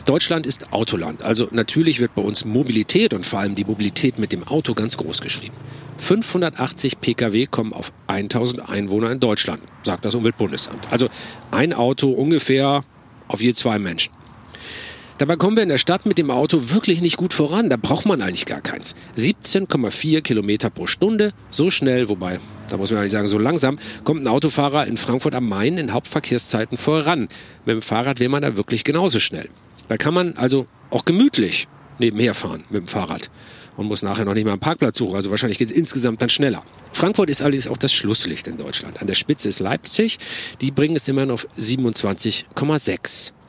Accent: German